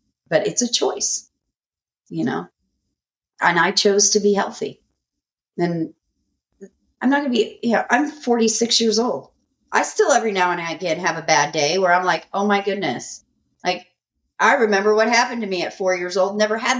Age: 40-59